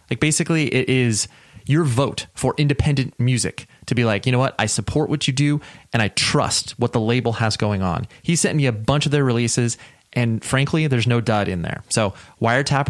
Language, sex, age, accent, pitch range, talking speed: English, male, 30-49, American, 105-140 Hz, 215 wpm